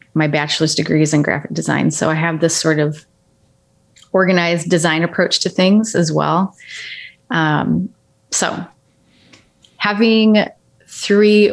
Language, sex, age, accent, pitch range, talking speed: English, female, 30-49, American, 160-185 Hz, 125 wpm